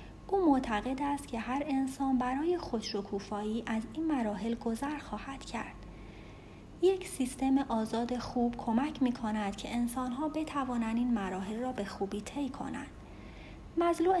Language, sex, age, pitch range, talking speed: Persian, female, 30-49, 215-285 Hz, 130 wpm